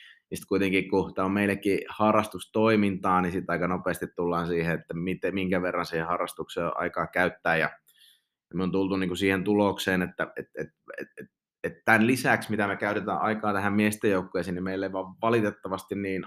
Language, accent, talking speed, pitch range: Finnish, native, 160 wpm, 90-110 Hz